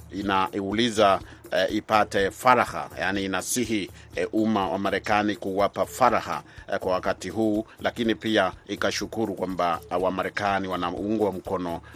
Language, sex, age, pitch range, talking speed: Swahili, male, 40-59, 95-110 Hz, 125 wpm